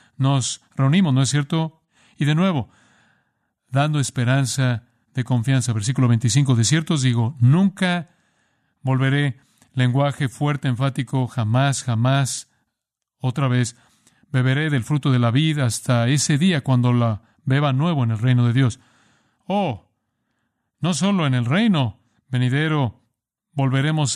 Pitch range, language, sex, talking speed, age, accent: 120-145 Hz, Spanish, male, 130 wpm, 50-69, Mexican